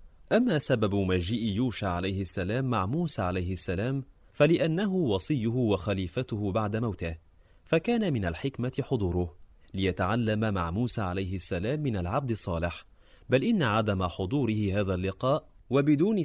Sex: male